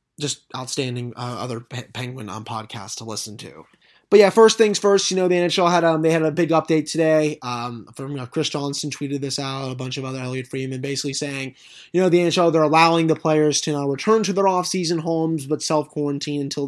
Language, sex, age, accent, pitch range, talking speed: English, male, 20-39, American, 125-150 Hz, 225 wpm